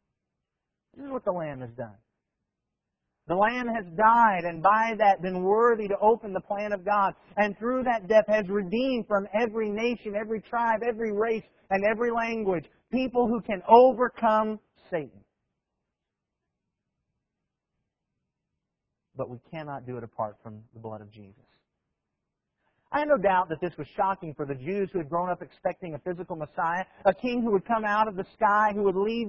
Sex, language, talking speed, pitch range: male, English, 175 wpm, 150-215 Hz